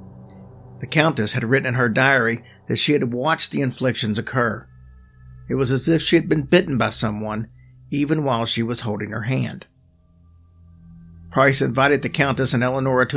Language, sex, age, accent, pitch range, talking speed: English, male, 50-69, American, 105-145 Hz, 175 wpm